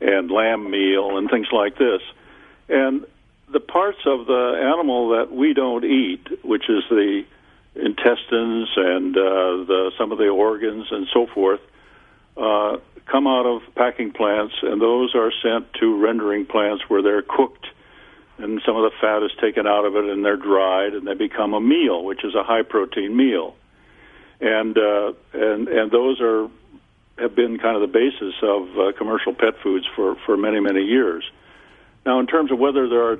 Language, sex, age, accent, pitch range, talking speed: English, male, 60-79, American, 105-140 Hz, 180 wpm